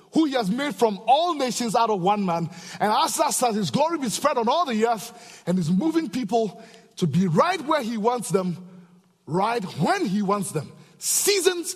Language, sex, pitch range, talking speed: English, male, 185-260 Hz, 205 wpm